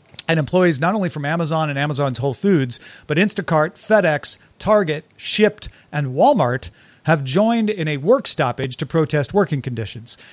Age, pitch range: 40-59, 140-175 Hz